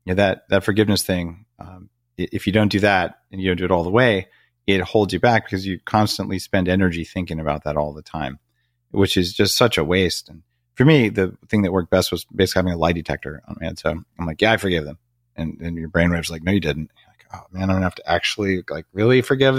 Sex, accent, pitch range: male, American, 85-110 Hz